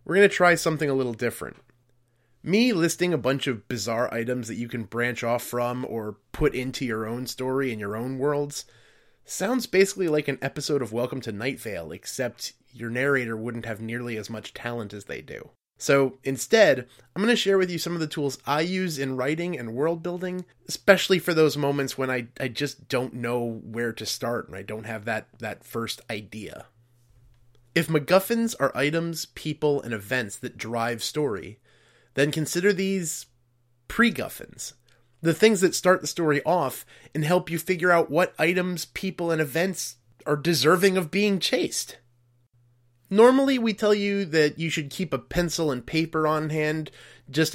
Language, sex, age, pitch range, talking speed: English, male, 30-49, 120-170 Hz, 180 wpm